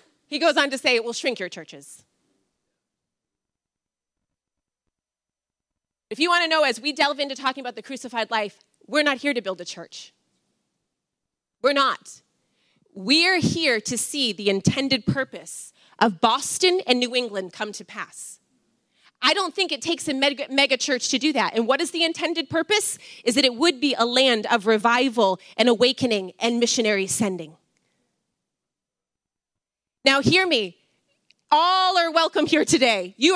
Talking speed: 160 wpm